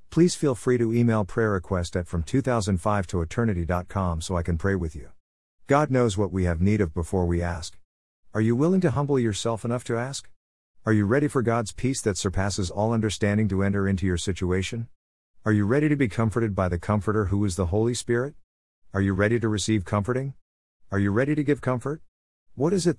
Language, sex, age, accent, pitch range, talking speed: English, male, 50-69, American, 85-115 Hz, 210 wpm